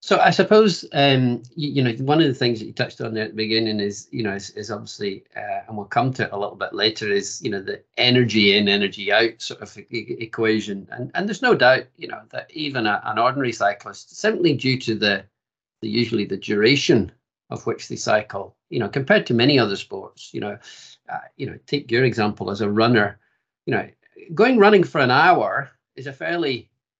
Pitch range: 105-140 Hz